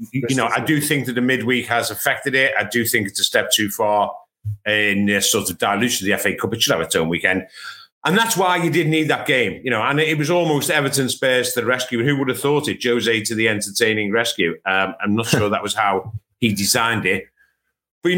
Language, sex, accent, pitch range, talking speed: English, male, British, 105-145 Hz, 250 wpm